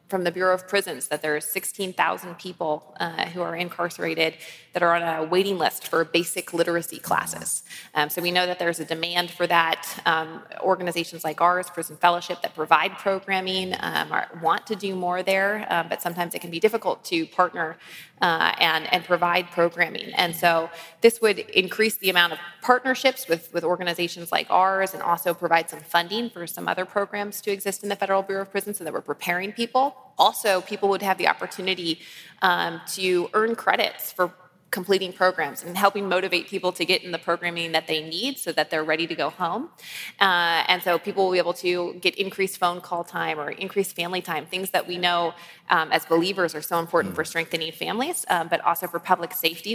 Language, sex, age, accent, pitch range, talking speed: English, female, 20-39, American, 165-195 Hz, 200 wpm